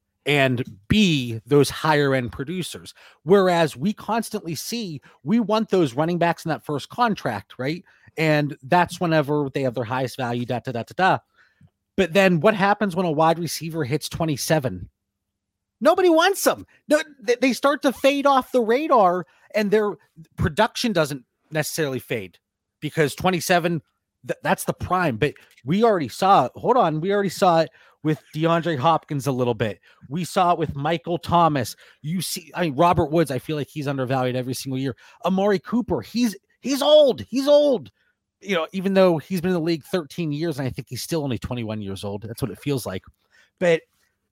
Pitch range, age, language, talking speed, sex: 140-195 Hz, 30-49, English, 175 wpm, male